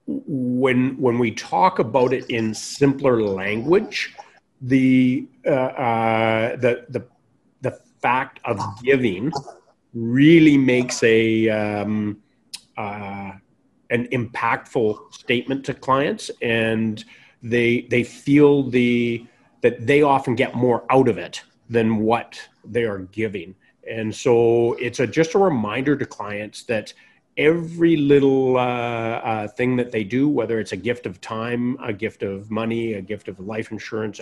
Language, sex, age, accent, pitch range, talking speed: English, male, 40-59, American, 110-135 Hz, 140 wpm